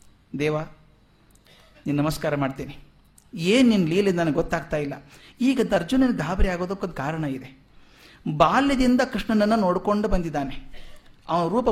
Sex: male